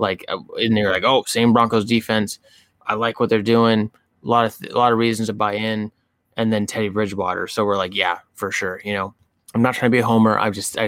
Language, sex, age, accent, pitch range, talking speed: English, male, 20-39, American, 100-110 Hz, 255 wpm